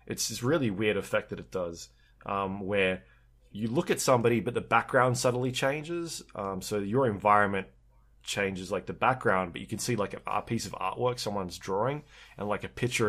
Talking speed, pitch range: 195 wpm, 90-115 Hz